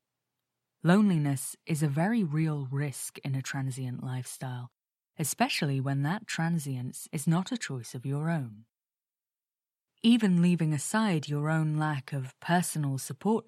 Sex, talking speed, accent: female, 135 wpm, British